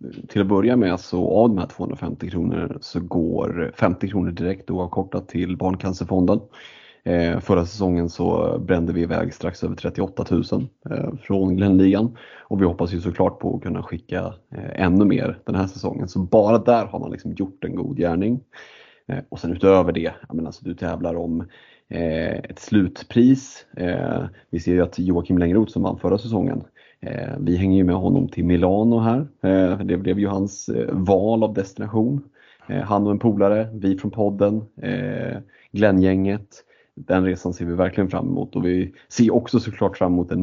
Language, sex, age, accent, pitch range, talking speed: Swedish, male, 30-49, native, 90-115 Hz, 170 wpm